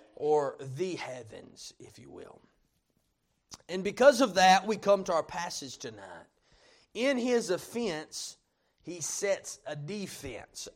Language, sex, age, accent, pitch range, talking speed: English, male, 30-49, American, 175-250 Hz, 130 wpm